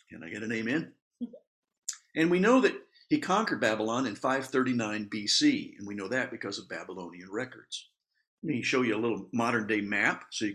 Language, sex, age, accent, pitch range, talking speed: English, male, 50-69, American, 110-155 Hz, 195 wpm